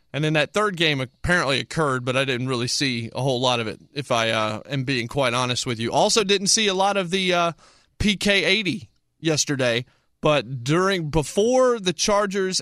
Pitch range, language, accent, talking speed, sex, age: 125-175 Hz, English, American, 195 wpm, male, 30-49